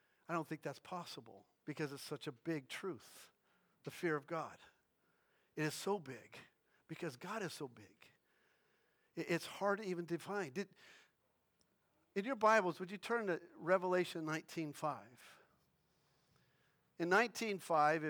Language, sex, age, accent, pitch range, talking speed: English, male, 50-69, American, 155-205 Hz, 140 wpm